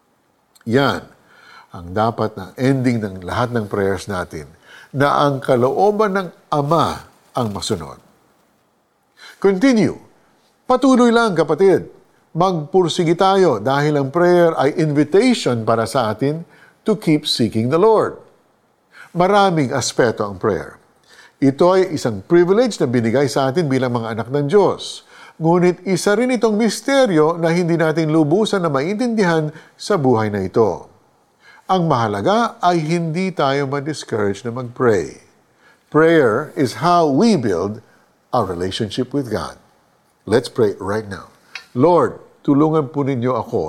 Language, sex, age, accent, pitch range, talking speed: Filipino, male, 50-69, native, 115-180 Hz, 130 wpm